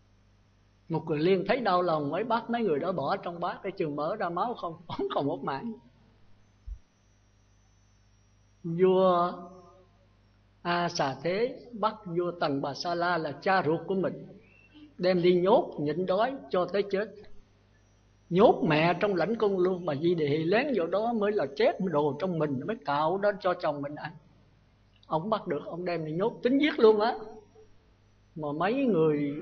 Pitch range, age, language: 135-185 Hz, 60-79, Vietnamese